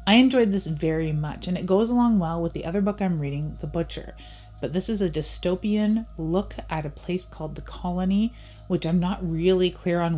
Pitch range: 155-185 Hz